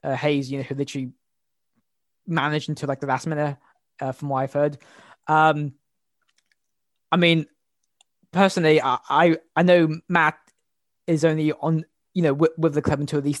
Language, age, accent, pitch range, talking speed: English, 20-39, British, 145-160 Hz, 165 wpm